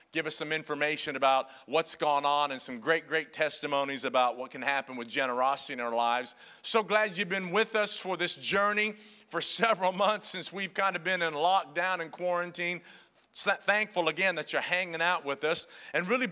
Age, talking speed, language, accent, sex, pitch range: 50-69, 195 wpm, English, American, male, 170-220 Hz